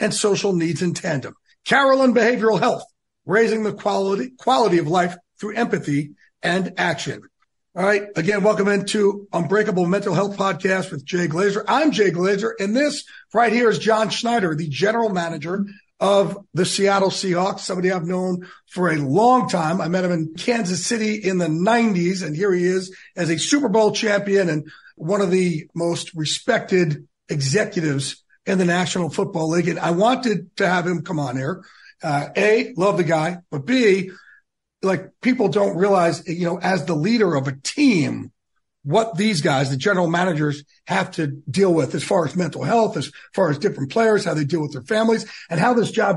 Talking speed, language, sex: 185 wpm, English, male